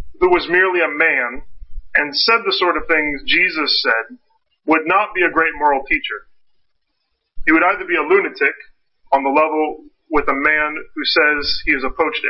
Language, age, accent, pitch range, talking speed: English, 40-59, American, 140-225 Hz, 185 wpm